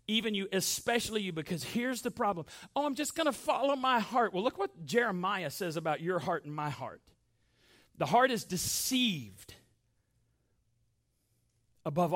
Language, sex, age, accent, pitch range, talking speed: English, male, 40-59, American, 140-230 Hz, 160 wpm